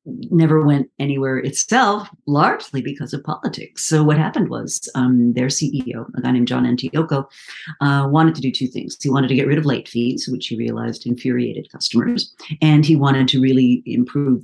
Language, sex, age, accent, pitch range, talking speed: English, female, 50-69, American, 125-155 Hz, 185 wpm